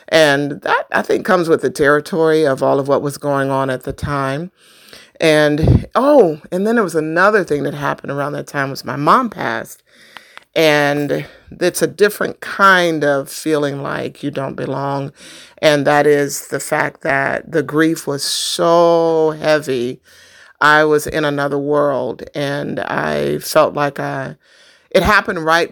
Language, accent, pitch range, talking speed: English, American, 140-170 Hz, 165 wpm